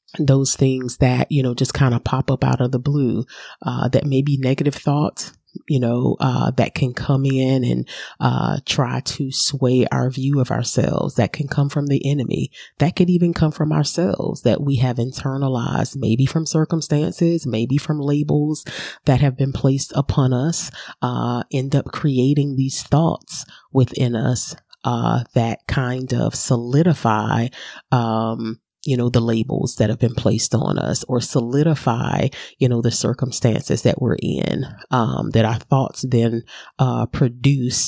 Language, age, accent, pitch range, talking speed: English, 30-49, American, 120-145 Hz, 165 wpm